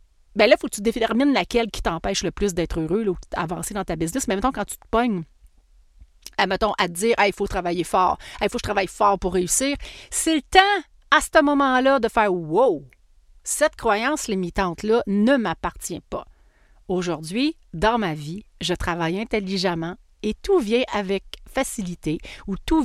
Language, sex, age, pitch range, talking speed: French, female, 40-59, 185-255 Hz, 200 wpm